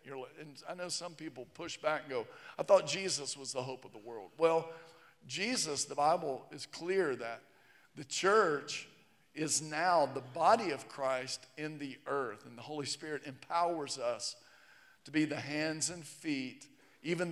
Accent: American